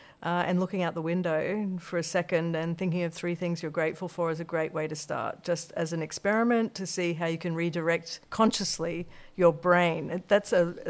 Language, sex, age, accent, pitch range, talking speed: English, female, 50-69, Australian, 165-190 Hz, 210 wpm